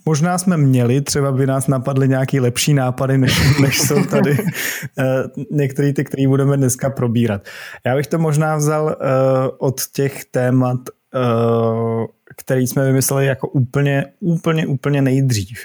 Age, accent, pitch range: 20-39, native, 120-140 Hz